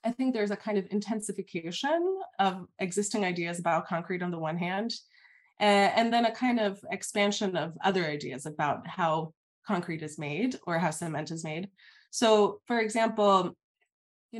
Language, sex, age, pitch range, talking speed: English, female, 20-39, 170-220 Hz, 165 wpm